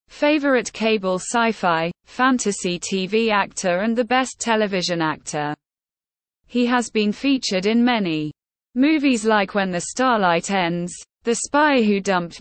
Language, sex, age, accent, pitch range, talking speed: English, female, 20-39, British, 180-250 Hz, 130 wpm